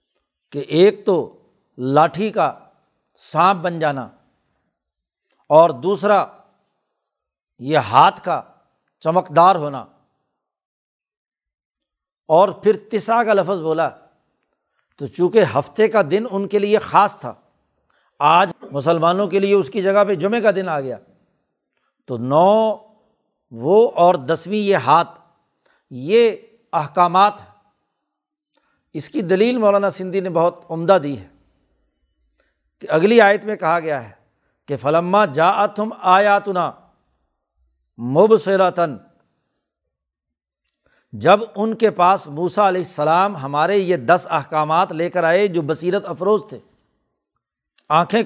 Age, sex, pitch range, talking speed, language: 60-79, male, 155-210 Hz, 120 wpm, Urdu